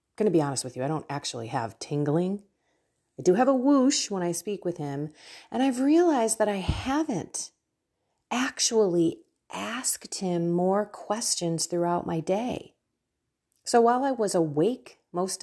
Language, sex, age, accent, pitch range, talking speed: English, female, 40-59, American, 160-225 Hz, 165 wpm